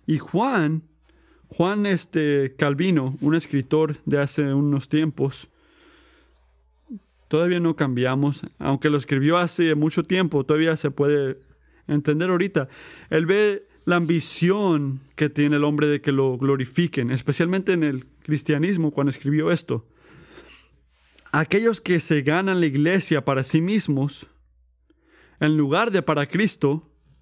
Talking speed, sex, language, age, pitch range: 125 wpm, male, Spanish, 30-49, 135-170 Hz